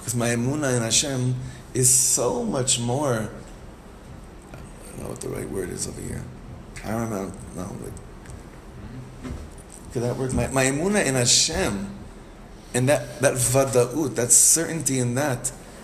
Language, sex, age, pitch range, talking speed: English, male, 30-49, 115-140 Hz, 150 wpm